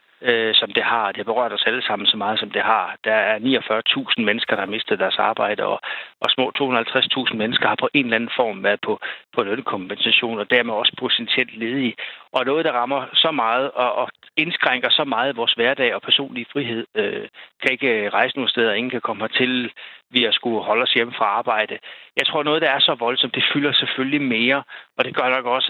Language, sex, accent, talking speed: Danish, male, native, 220 wpm